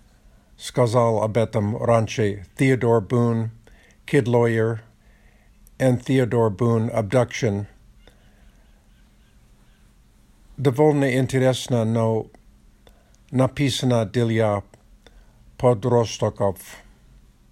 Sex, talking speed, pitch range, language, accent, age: male, 60 wpm, 110-130 Hz, Russian, American, 50-69